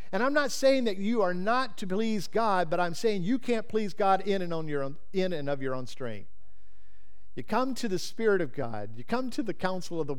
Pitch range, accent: 125-210 Hz, American